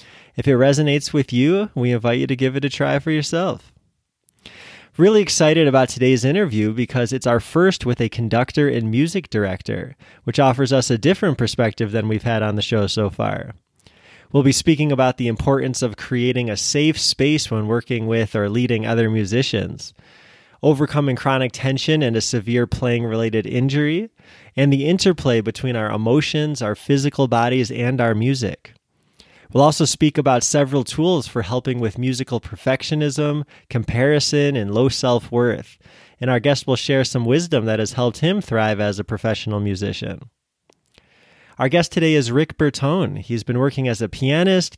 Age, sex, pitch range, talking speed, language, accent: 20-39, male, 115-145 Hz, 170 wpm, English, American